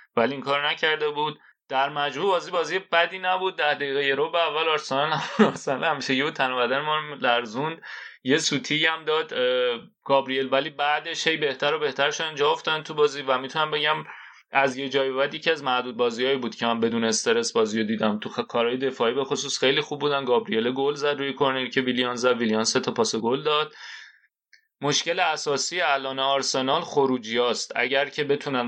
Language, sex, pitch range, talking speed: Persian, male, 120-150 Hz, 170 wpm